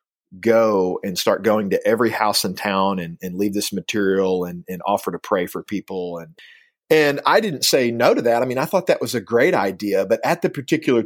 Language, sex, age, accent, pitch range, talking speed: English, male, 40-59, American, 100-145 Hz, 230 wpm